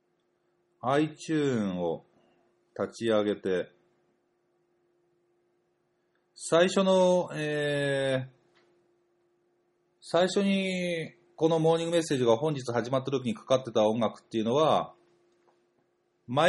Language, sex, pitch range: Japanese, male, 120-175 Hz